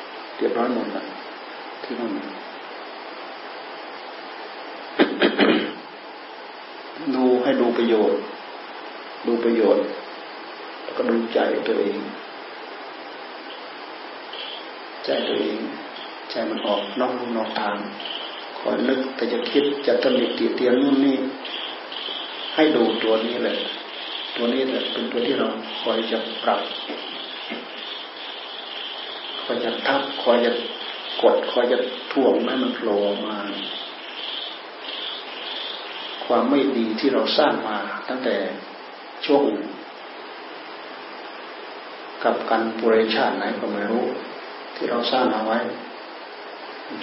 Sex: male